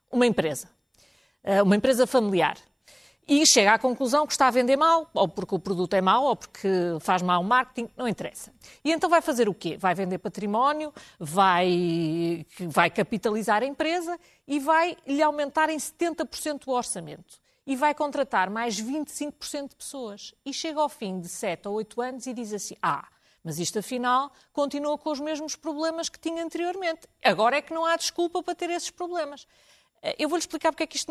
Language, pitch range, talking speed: Portuguese, 215-290 Hz, 185 wpm